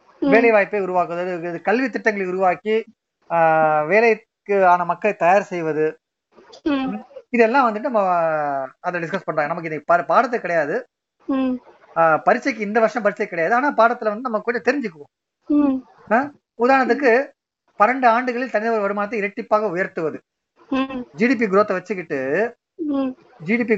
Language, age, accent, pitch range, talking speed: Tamil, 30-49, native, 175-240 Hz, 110 wpm